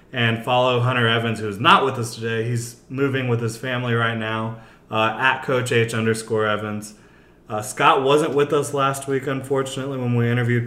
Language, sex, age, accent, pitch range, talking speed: English, male, 30-49, American, 110-125 Hz, 190 wpm